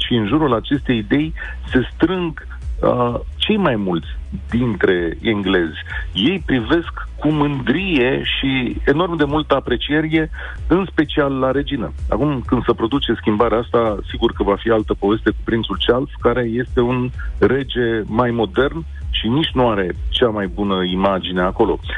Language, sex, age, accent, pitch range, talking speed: Romanian, male, 40-59, native, 95-130 Hz, 150 wpm